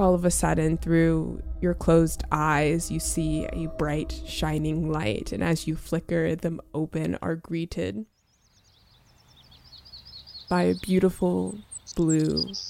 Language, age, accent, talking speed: English, 20-39, American, 125 wpm